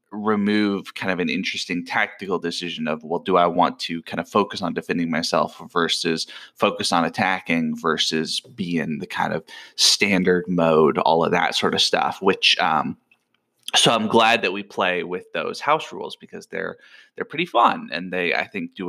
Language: English